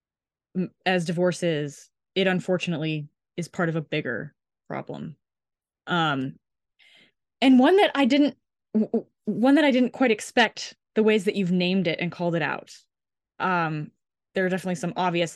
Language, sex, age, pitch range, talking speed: English, female, 20-39, 170-210 Hz, 150 wpm